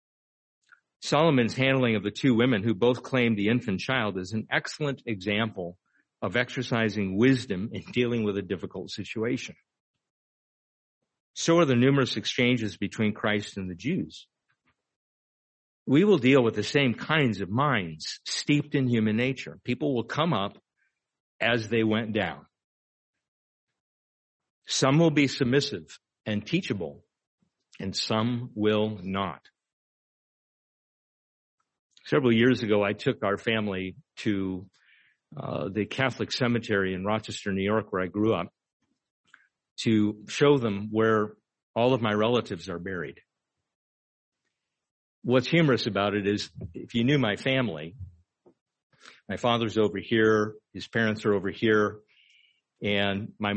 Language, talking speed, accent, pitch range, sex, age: English, 130 wpm, American, 100-125 Hz, male, 50-69